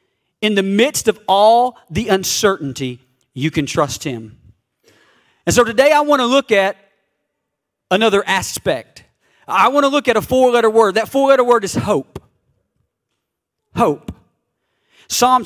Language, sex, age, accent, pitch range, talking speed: English, male, 40-59, American, 160-235 Hz, 140 wpm